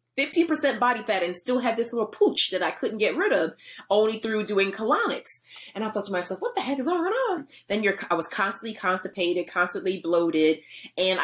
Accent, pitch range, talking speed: American, 170-230 Hz, 215 wpm